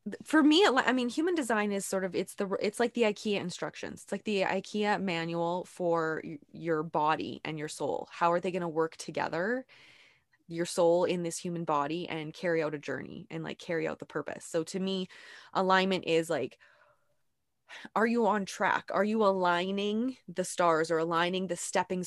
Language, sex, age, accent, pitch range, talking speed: English, female, 20-39, American, 165-195 Hz, 190 wpm